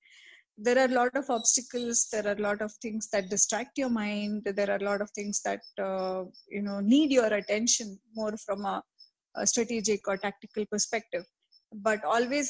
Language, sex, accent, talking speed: English, female, Indian, 185 wpm